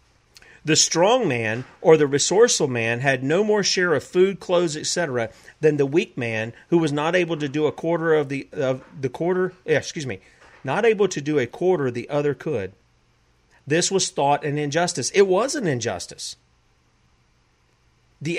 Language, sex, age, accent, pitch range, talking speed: English, male, 40-59, American, 120-165 Hz, 175 wpm